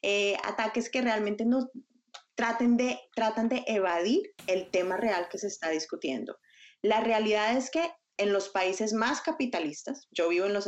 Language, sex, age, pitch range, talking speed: Spanish, female, 20-39, 180-235 Hz, 170 wpm